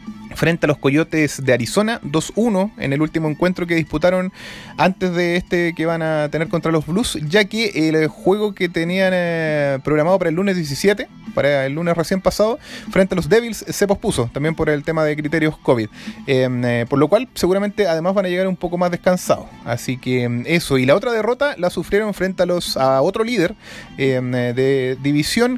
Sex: male